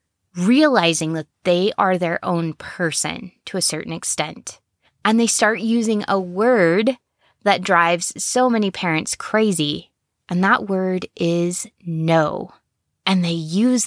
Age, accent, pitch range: 20-39, American, 170-215 Hz